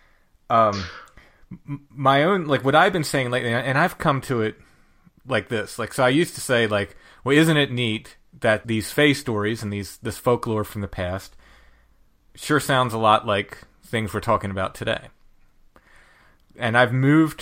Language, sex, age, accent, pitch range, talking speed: English, male, 30-49, American, 105-130 Hz, 175 wpm